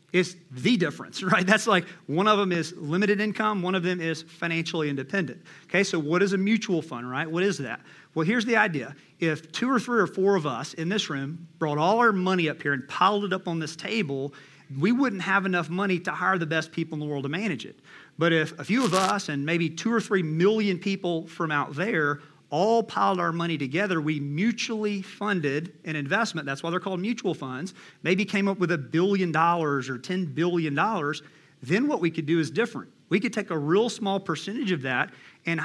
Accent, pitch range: American, 160-195 Hz